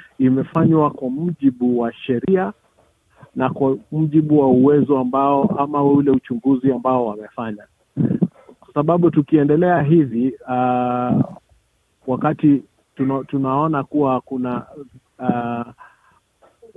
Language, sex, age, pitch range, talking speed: Swahili, male, 50-69, 125-150 Hz, 95 wpm